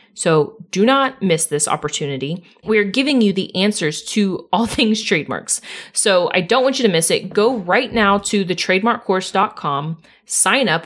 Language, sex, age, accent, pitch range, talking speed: English, female, 30-49, American, 185-230 Hz, 170 wpm